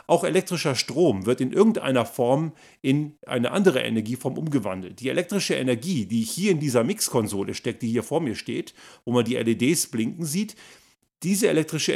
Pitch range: 120-165 Hz